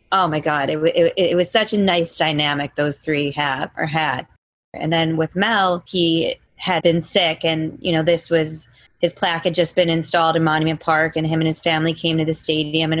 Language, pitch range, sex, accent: English, 155-175 Hz, female, American